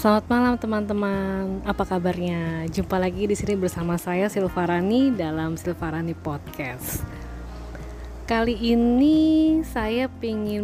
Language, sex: Indonesian, female